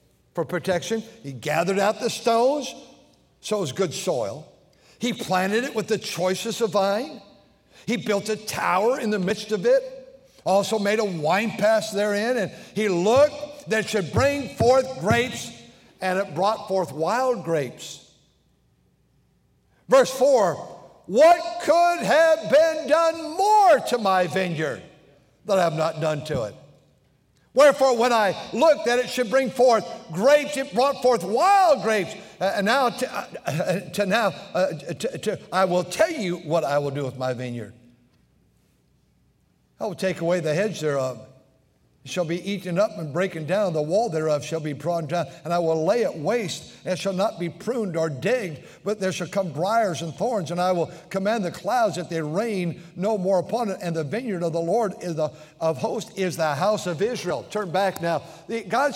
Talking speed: 180 wpm